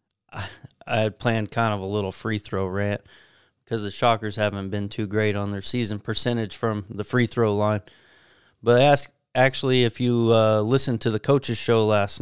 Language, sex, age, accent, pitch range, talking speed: English, male, 30-49, American, 105-125 Hz, 185 wpm